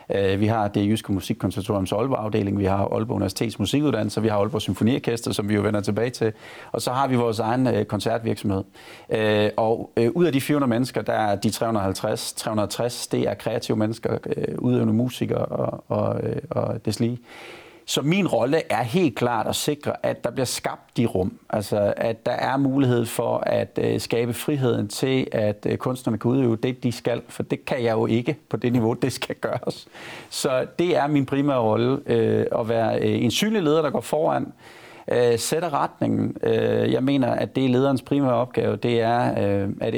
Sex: male